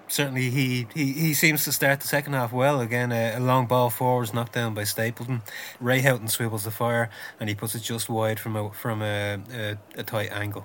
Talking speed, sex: 225 wpm, male